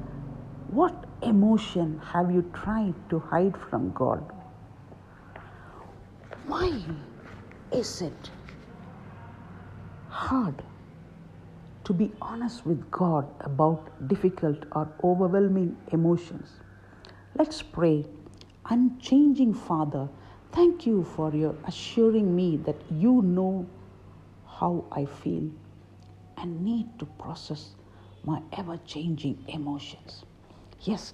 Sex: female